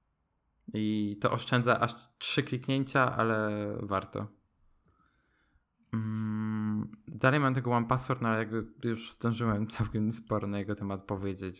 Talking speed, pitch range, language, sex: 125 wpm, 105-130 Hz, Polish, male